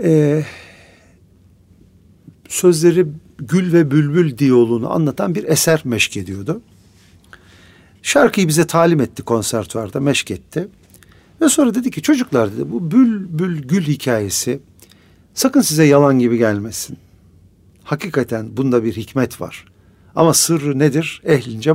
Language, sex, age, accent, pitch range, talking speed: Turkish, male, 50-69, native, 95-155 Hz, 120 wpm